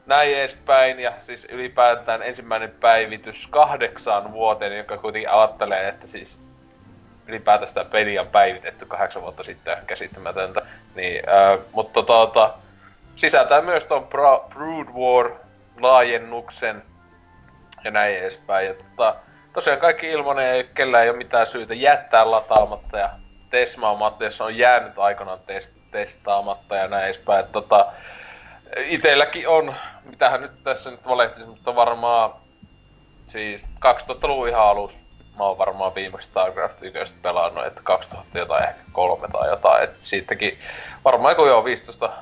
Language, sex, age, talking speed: Finnish, male, 20-39, 130 wpm